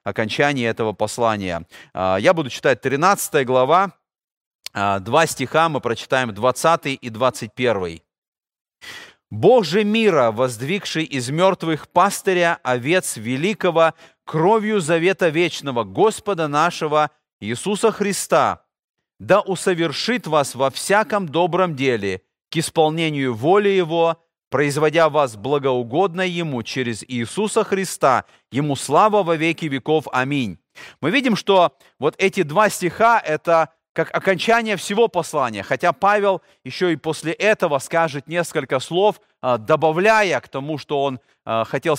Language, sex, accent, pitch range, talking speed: Russian, male, native, 135-190 Hz, 115 wpm